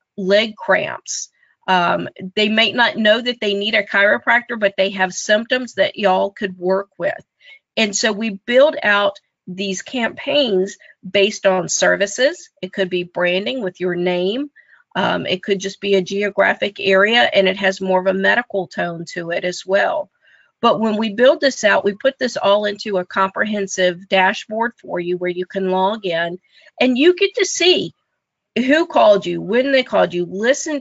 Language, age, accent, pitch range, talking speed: English, 40-59, American, 190-240 Hz, 180 wpm